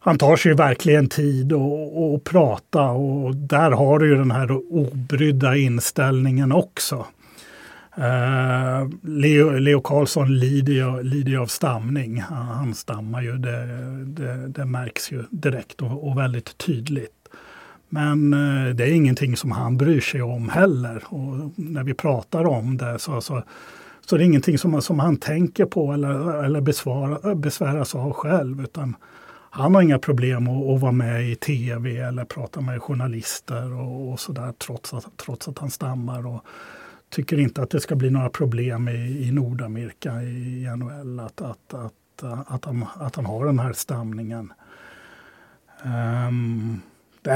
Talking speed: 155 wpm